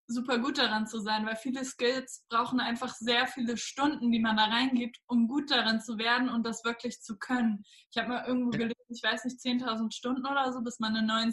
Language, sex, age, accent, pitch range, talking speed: German, female, 20-39, German, 225-245 Hz, 230 wpm